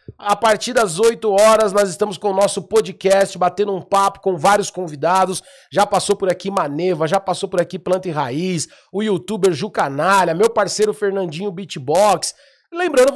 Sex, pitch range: male, 185-240 Hz